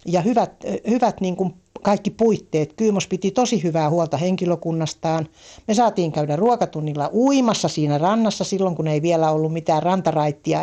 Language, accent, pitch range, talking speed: Finnish, native, 150-185 Hz, 150 wpm